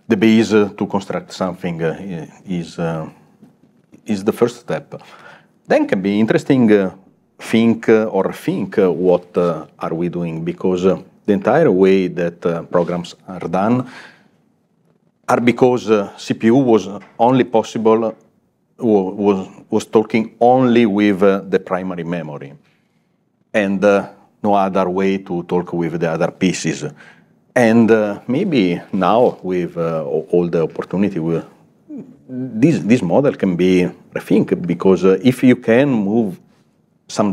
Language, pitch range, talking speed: English, 85-110 Hz, 145 wpm